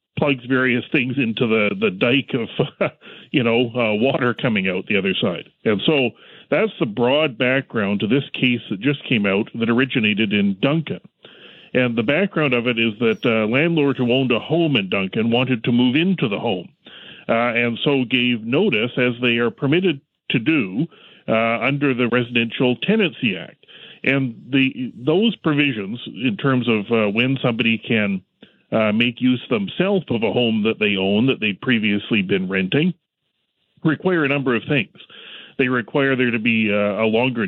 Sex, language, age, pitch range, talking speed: male, English, 40-59, 115-145 Hz, 180 wpm